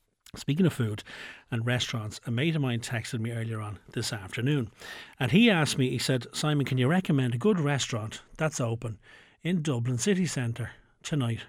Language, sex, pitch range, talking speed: English, male, 120-145 Hz, 185 wpm